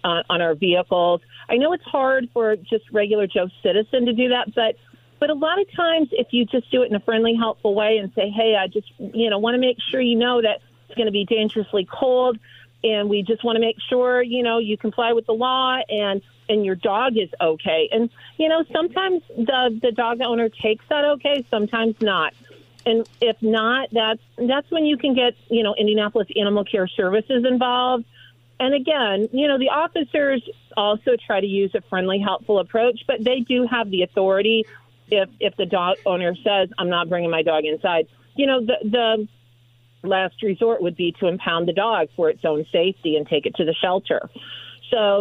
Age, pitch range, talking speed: 40-59, 185-245 Hz, 205 wpm